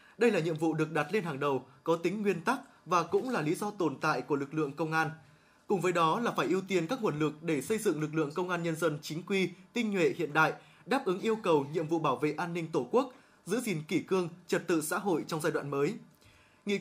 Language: Vietnamese